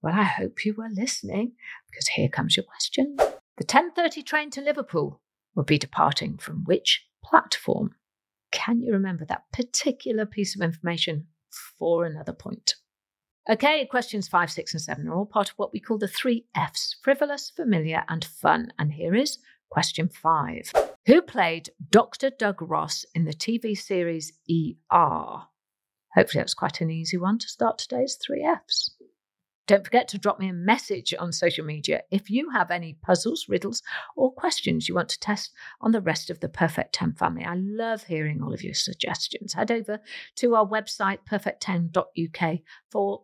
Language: English